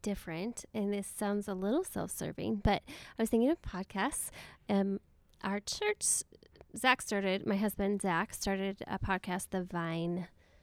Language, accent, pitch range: English, American, 185-215 Hz